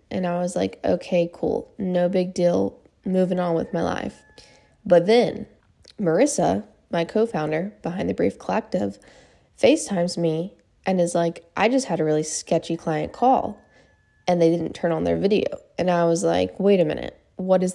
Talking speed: 175 wpm